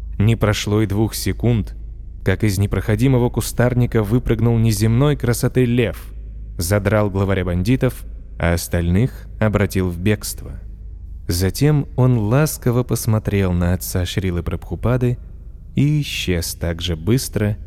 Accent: native